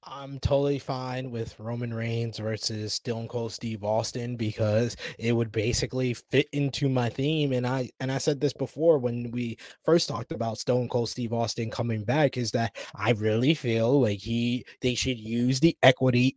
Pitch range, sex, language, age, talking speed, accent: 125-150 Hz, male, English, 20-39, 180 wpm, American